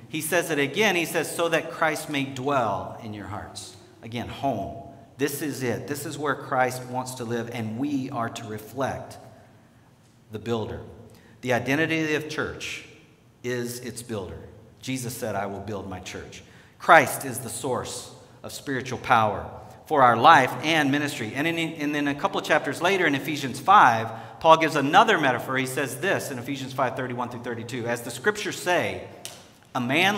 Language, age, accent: English, 50-69, American